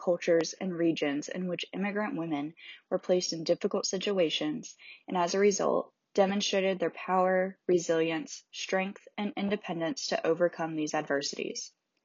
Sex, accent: female, American